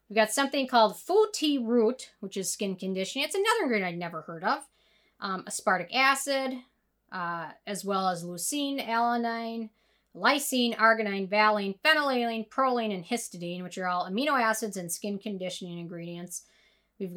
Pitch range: 195-250 Hz